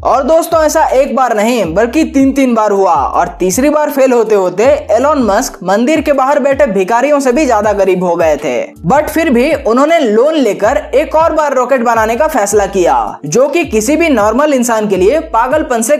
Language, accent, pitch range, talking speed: Hindi, native, 215-305 Hz, 205 wpm